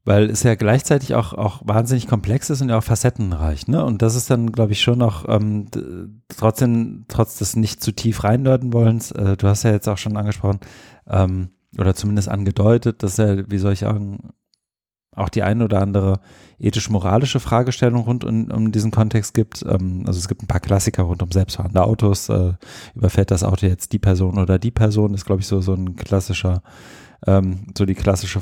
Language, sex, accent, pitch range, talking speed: English, male, German, 100-115 Hz, 205 wpm